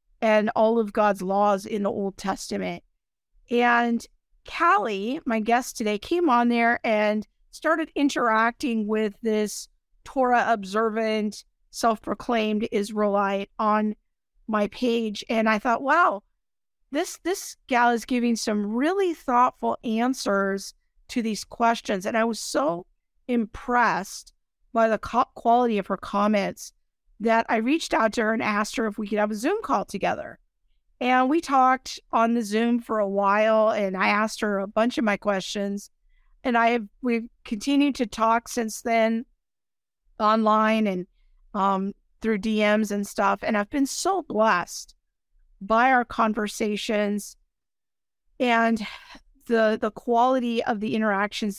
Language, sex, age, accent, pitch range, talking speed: English, female, 50-69, American, 210-240 Hz, 140 wpm